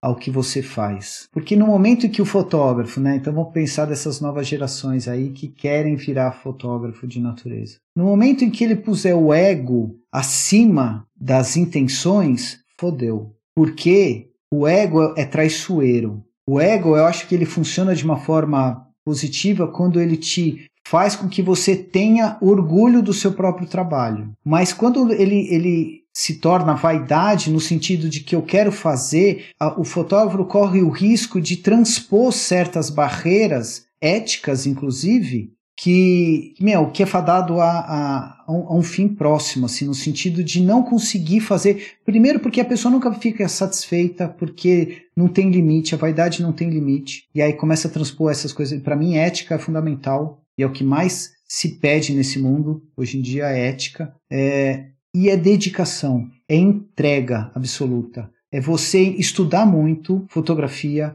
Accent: Brazilian